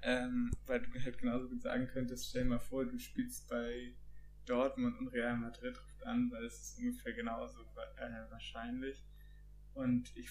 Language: German